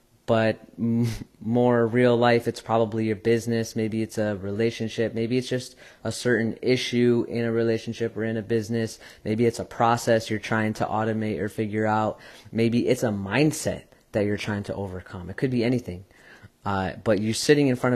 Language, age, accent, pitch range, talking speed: English, 30-49, American, 105-125 Hz, 185 wpm